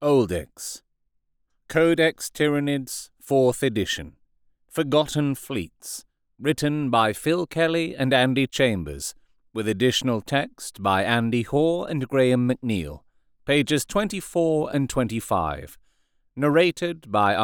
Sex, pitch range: male, 110-160 Hz